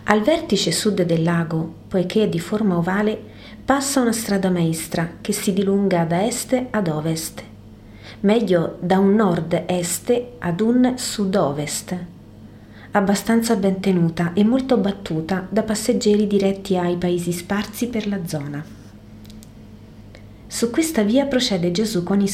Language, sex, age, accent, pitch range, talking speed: Italian, female, 40-59, native, 165-210 Hz, 135 wpm